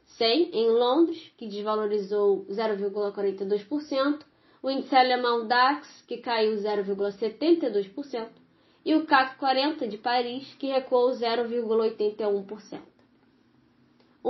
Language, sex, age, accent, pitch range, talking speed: Portuguese, female, 10-29, Brazilian, 220-280 Hz, 90 wpm